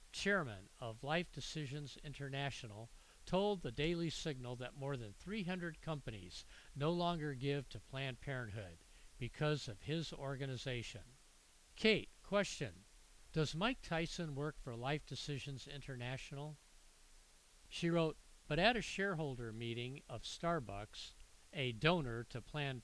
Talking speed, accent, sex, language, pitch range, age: 125 wpm, American, male, English, 115-160 Hz, 50-69